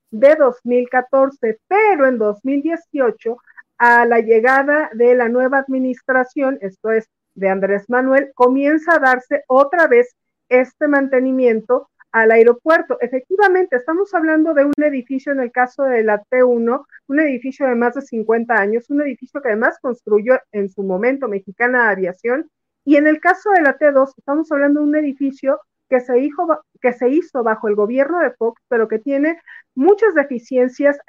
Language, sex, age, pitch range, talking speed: Spanish, female, 50-69, 235-295 Hz, 155 wpm